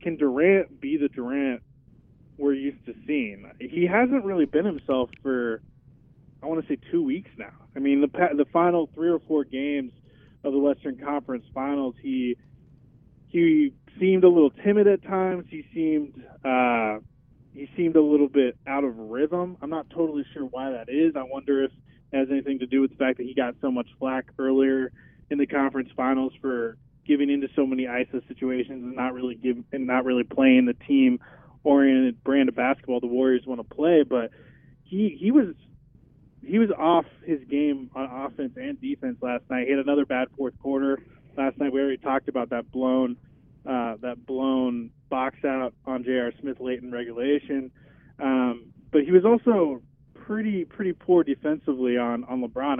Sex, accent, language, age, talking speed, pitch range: male, American, English, 20-39, 185 wpm, 130-155 Hz